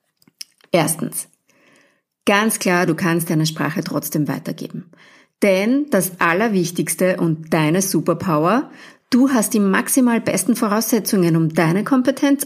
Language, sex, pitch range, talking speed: English, female, 175-240 Hz, 115 wpm